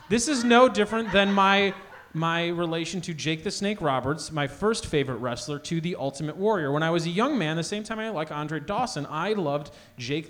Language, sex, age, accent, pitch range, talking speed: English, male, 30-49, American, 150-205 Hz, 215 wpm